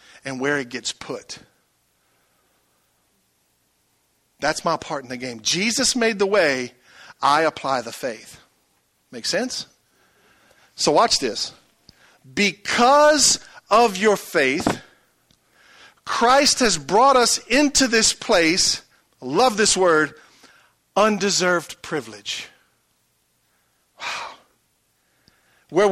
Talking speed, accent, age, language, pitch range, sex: 95 wpm, American, 50-69, English, 195-270 Hz, male